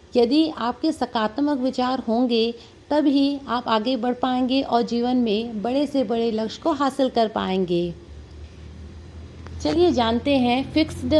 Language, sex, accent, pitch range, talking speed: Hindi, female, native, 215-265 Hz, 135 wpm